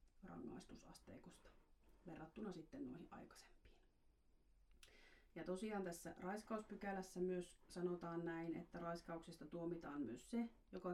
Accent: native